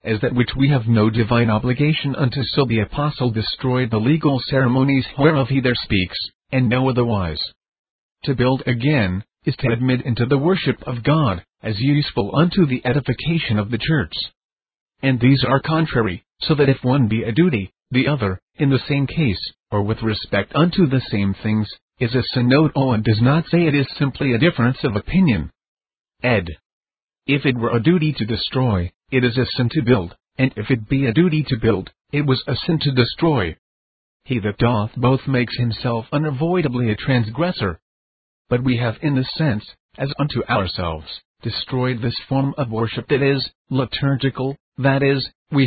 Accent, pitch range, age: American, 115-140 Hz, 40-59